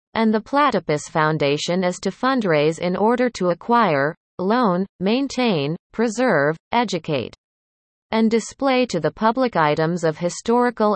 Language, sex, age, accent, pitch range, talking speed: English, female, 30-49, American, 160-230 Hz, 125 wpm